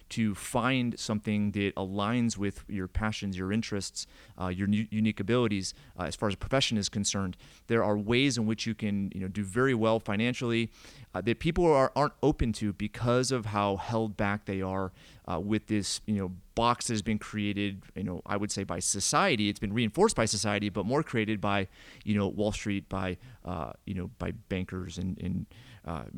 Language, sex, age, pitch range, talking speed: English, male, 30-49, 95-115 Hz, 200 wpm